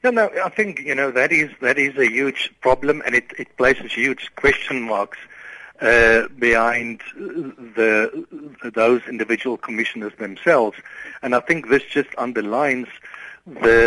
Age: 60-79